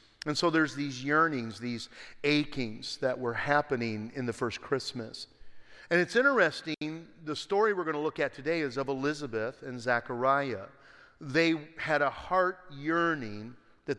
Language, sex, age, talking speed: English, male, 50-69, 155 wpm